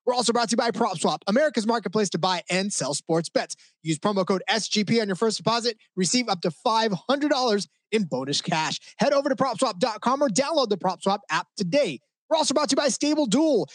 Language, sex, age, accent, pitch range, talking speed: English, male, 20-39, American, 190-250 Hz, 210 wpm